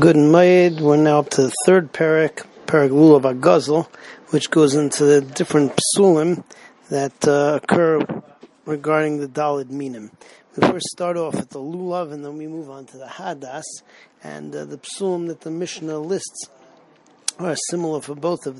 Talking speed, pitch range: 175 wpm, 145-165 Hz